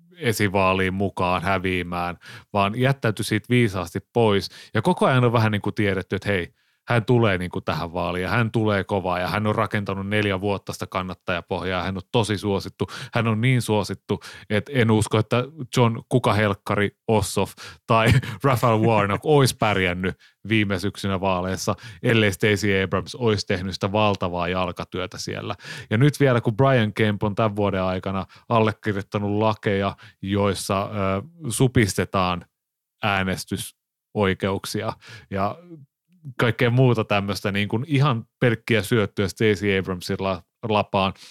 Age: 30-49